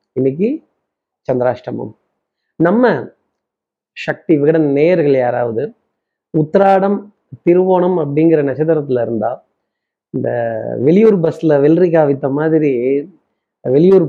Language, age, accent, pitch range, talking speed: Tamil, 30-49, native, 135-170 Hz, 70 wpm